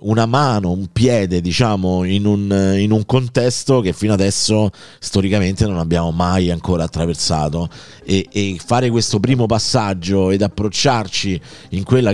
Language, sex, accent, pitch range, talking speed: Italian, male, native, 90-115 Hz, 145 wpm